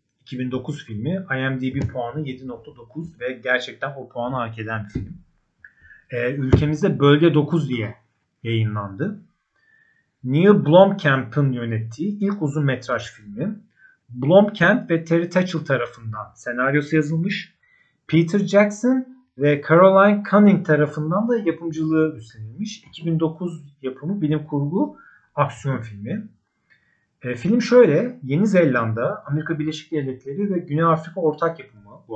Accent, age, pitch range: native, 40-59, 125-180 Hz